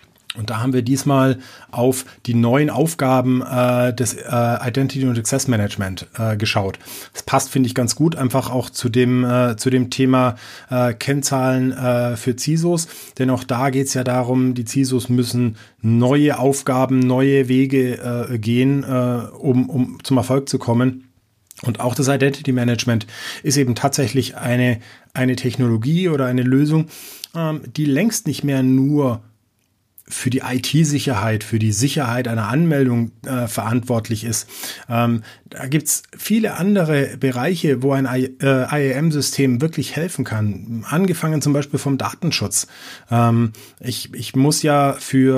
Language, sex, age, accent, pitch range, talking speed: German, male, 30-49, German, 120-135 Hz, 150 wpm